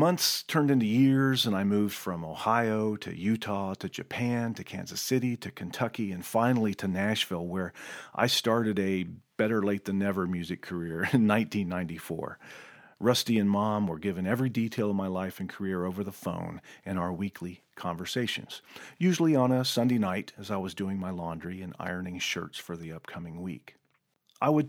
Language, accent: English, American